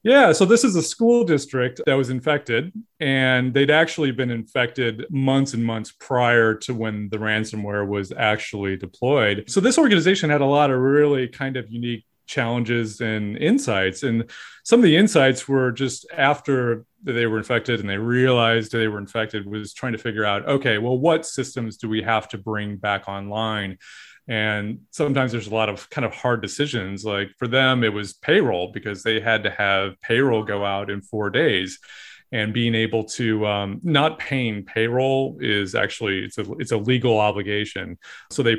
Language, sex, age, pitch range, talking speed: English, male, 30-49, 110-135 Hz, 185 wpm